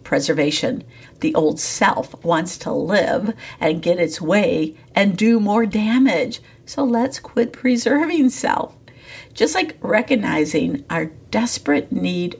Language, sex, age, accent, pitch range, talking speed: English, female, 50-69, American, 170-255 Hz, 125 wpm